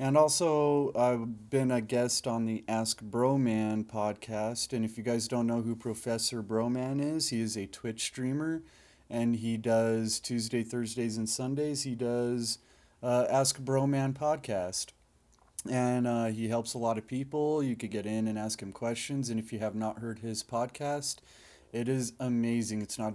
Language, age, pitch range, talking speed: English, 30-49, 110-125 Hz, 185 wpm